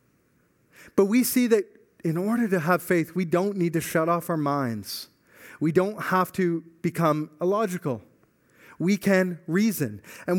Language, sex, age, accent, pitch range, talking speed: English, male, 30-49, American, 140-205 Hz, 155 wpm